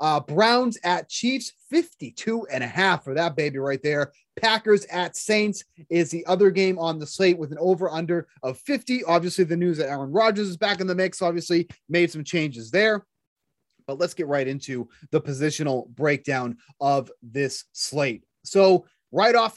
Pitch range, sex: 165-215 Hz, male